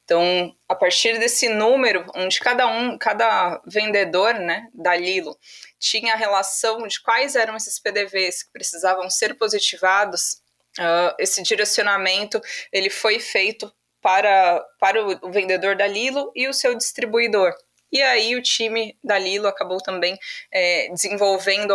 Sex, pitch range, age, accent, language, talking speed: female, 190-225 Hz, 20-39, Brazilian, Portuguese, 135 wpm